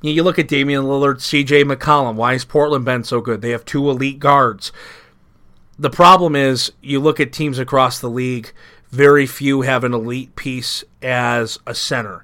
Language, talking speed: English, 180 wpm